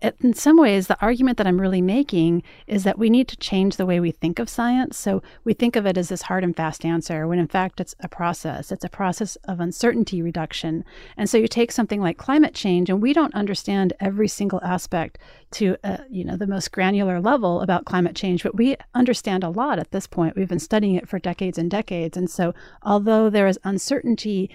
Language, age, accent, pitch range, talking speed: English, 40-59, American, 175-210 Hz, 225 wpm